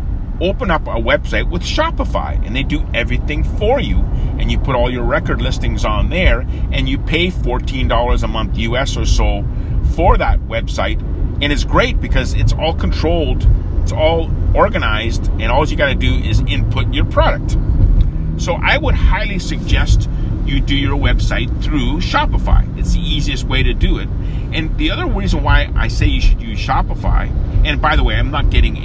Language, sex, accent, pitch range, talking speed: English, male, American, 90-110 Hz, 185 wpm